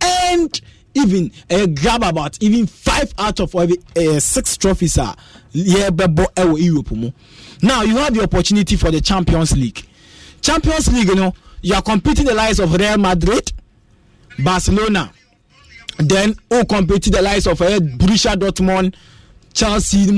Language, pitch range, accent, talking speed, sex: English, 175-215 Hz, Nigerian, 150 wpm, male